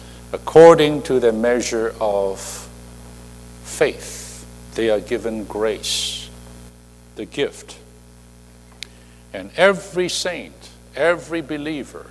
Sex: male